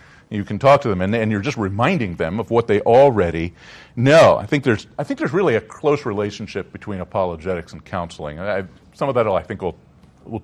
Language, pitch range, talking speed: English, 110-145 Hz, 225 wpm